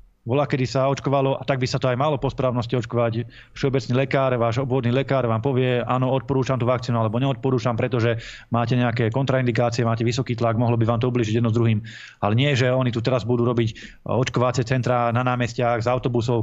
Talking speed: 205 wpm